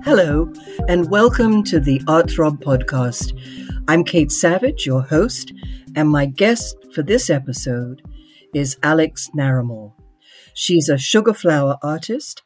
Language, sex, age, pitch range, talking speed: English, female, 60-79, 135-175 Hz, 130 wpm